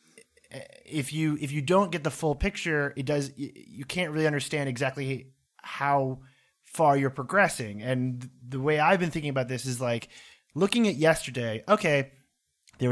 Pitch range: 125-155 Hz